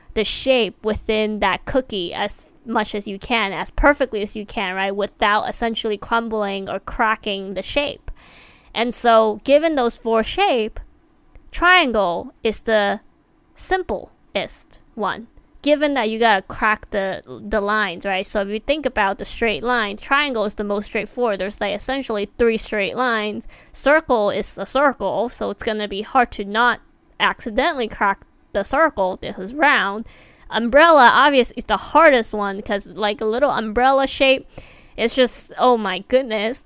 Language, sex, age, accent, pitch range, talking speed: English, female, 20-39, American, 205-265 Hz, 165 wpm